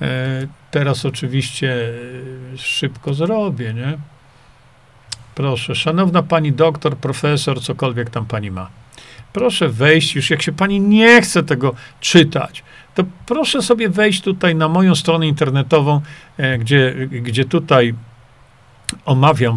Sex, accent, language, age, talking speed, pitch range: male, native, Polish, 50-69, 115 wpm, 125-175 Hz